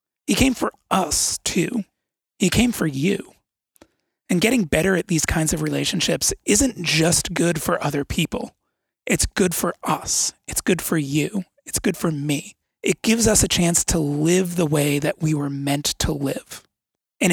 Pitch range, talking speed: 145-185 Hz, 175 wpm